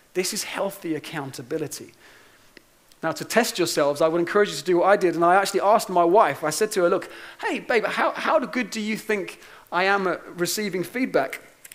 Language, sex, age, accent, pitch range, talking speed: English, male, 30-49, British, 155-205 Hz, 210 wpm